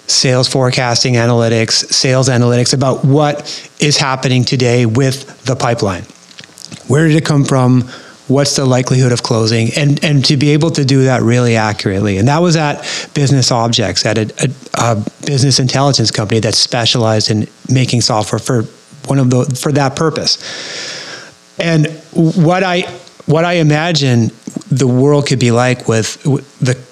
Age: 30-49